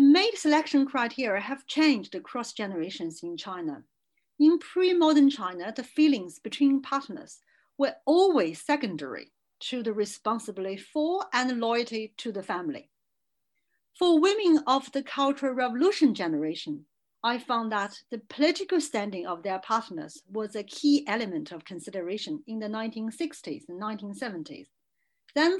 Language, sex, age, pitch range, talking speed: English, female, 50-69, 210-305 Hz, 130 wpm